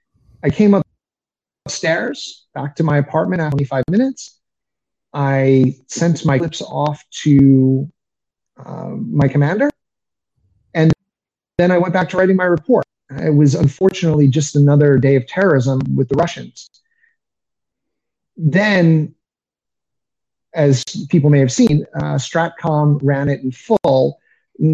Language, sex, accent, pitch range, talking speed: English, male, American, 135-170 Hz, 130 wpm